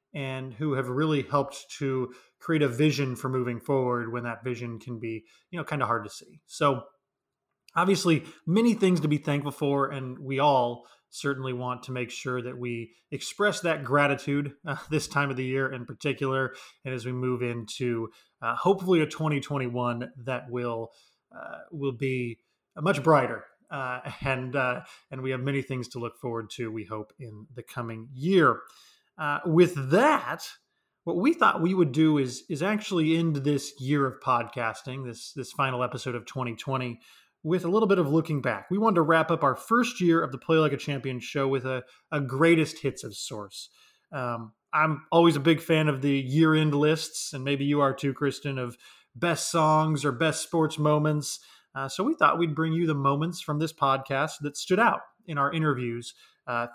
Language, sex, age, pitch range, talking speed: English, male, 20-39, 125-155 Hz, 190 wpm